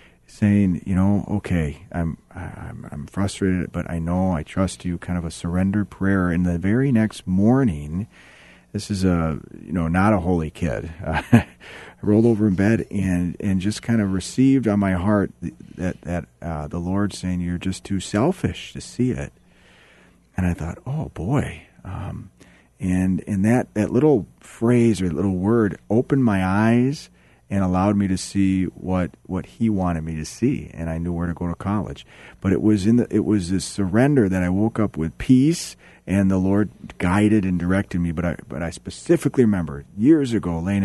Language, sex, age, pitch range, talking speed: English, male, 40-59, 85-105 Hz, 190 wpm